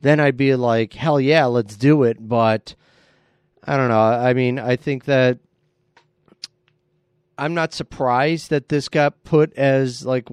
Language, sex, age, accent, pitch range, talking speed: English, male, 30-49, American, 110-135 Hz, 155 wpm